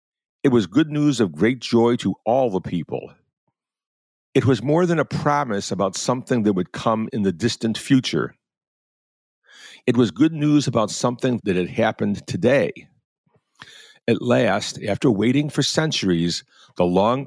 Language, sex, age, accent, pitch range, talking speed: English, male, 50-69, American, 100-135 Hz, 155 wpm